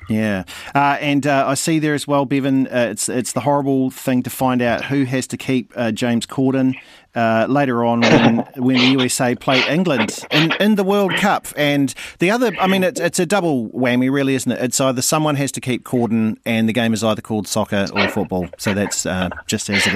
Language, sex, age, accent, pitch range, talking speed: English, male, 40-59, Australian, 115-155 Hz, 225 wpm